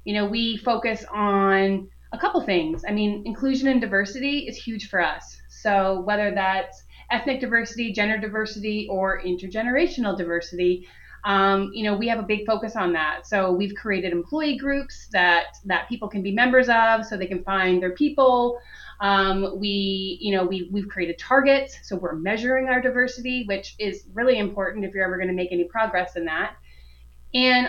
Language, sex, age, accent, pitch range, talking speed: English, female, 30-49, American, 190-240 Hz, 180 wpm